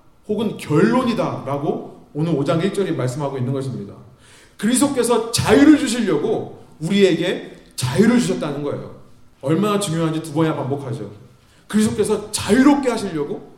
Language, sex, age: Korean, male, 30-49